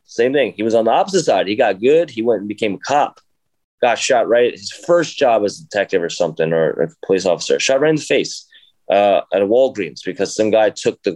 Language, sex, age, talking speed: English, male, 20-39, 255 wpm